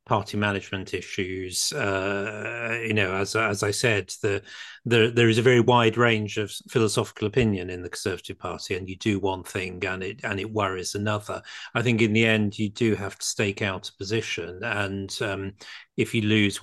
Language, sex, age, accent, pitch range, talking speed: English, male, 40-59, British, 100-120 Hz, 195 wpm